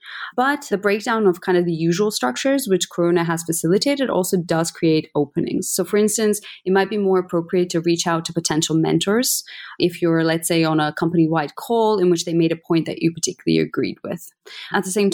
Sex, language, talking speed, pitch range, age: female, English, 210 wpm, 155-190 Hz, 30-49